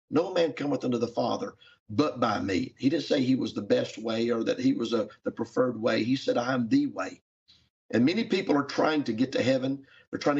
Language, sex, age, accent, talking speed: English, male, 50-69, American, 235 wpm